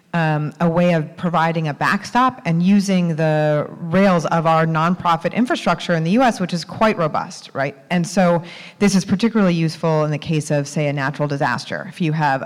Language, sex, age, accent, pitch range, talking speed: English, female, 30-49, American, 155-185 Hz, 195 wpm